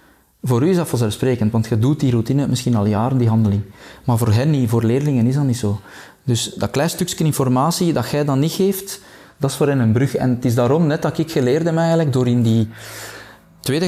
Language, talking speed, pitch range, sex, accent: Dutch, 235 wpm, 115-150 Hz, male, Dutch